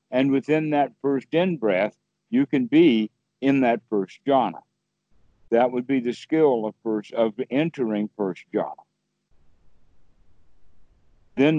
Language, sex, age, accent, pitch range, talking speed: English, male, 60-79, American, 110-130 Hz, 130 wpm